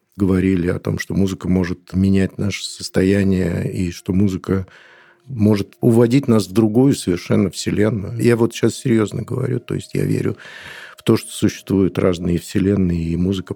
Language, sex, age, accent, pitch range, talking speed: Russian, male, 50-69, native, 95-110 Hz, 160 wpm